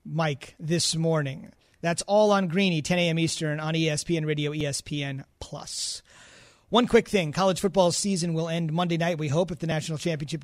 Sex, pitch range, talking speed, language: male, 160-200 Hz, 170 wpm, English